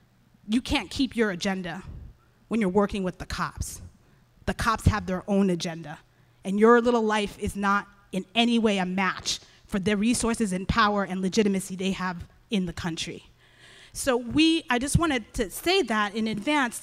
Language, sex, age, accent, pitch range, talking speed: English, female, 30-49, American, 200-245 Hz, 180 wpm